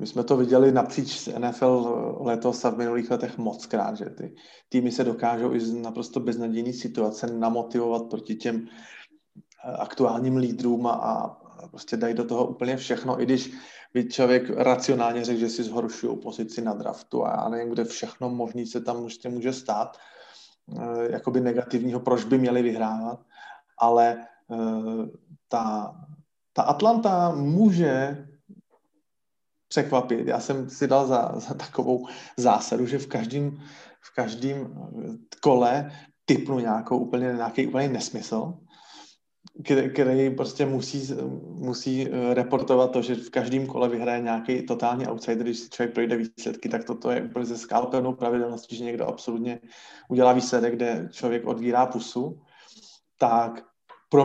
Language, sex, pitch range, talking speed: Slovak, male, 120-135 Hz, 140 wpm